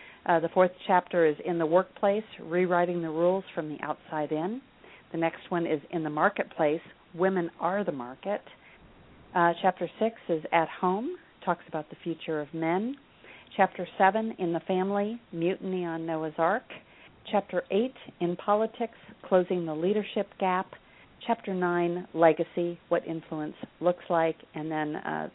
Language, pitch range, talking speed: English, 160-185 Hz, 155 wpm